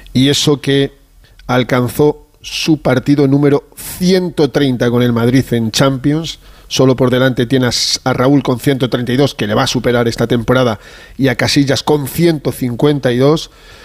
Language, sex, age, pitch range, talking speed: Spanish, male, 40-59, 120-150 Hz, 145 wpm